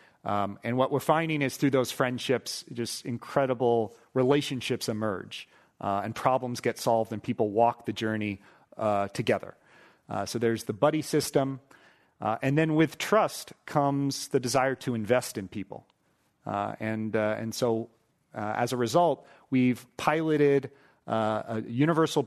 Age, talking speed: 40-59, 155 wpm